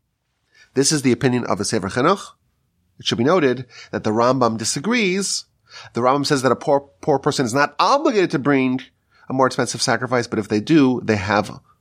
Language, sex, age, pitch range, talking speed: English, male, 30-49, 115-185 Hz, 200 wpm